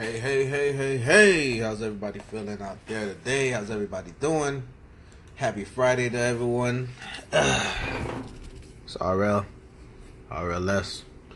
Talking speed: 110 wpm